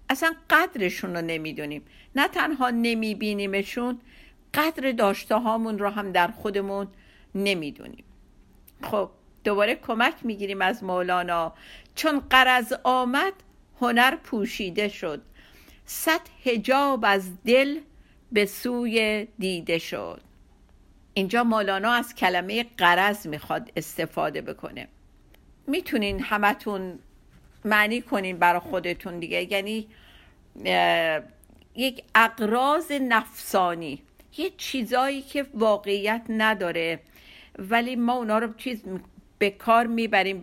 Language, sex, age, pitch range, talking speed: Persian, female, 50-69, 195-260 Hz, 100 wpm